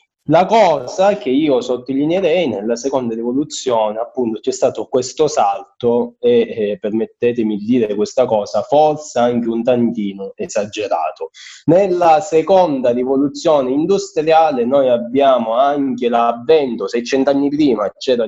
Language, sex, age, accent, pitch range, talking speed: Italian, male, 20-39, native, 120-175 Hz, 120 wpm